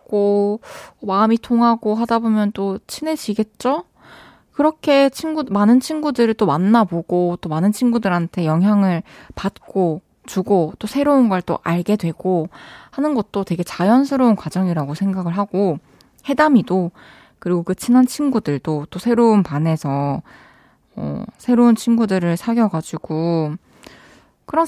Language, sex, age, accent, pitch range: Korean, female, 20-39, native, 175-245 Hz